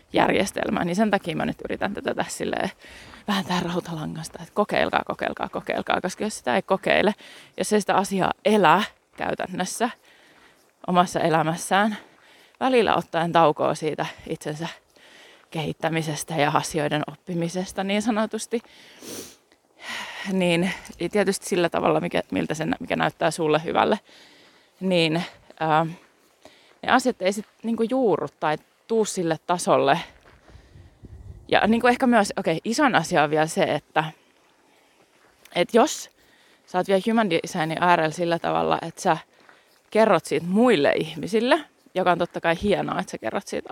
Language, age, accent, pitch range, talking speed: Finnish, 20-39, native, 165-215 Hz, 140 wpm